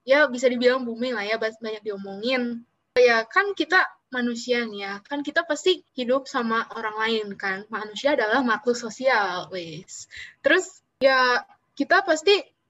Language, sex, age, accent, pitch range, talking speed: Indonesian, female, 20-39, native, 225-280 Hz, 145 wpm